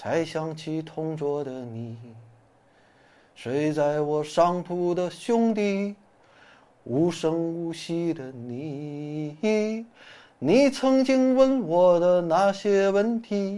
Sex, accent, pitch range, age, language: male, native, 160-200 Hz, 30-49, Chinese